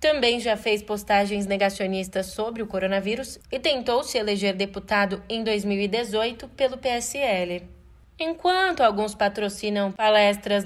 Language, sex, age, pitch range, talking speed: Portuguese, female, 20-39, 205-265 Hz, 120 wpm